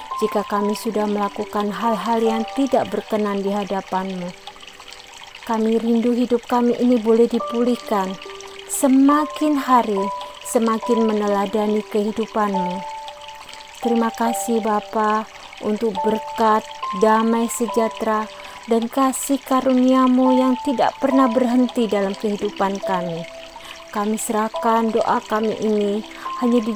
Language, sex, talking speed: Indonesian, female, 105 wpm